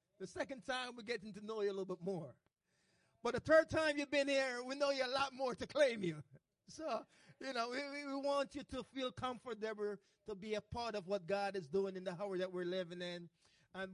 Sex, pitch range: male, 195-245 Hz